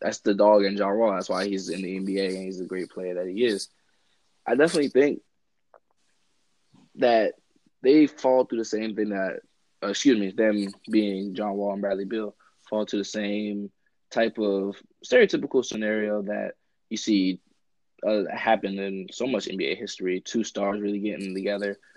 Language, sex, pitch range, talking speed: English, male, 95-110 Hz, 170 wpm